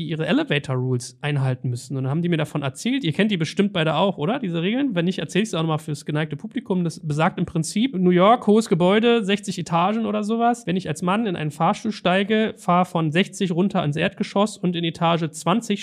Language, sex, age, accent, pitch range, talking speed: German, male, 30-49, German, 155-195 Hz, 225 wpm